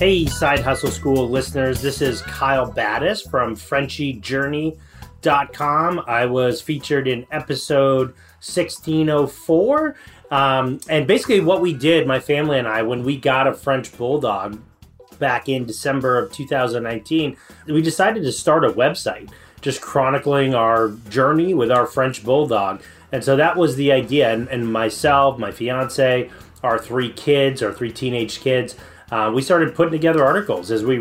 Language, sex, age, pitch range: English, male, 30-49, 120-150 Hz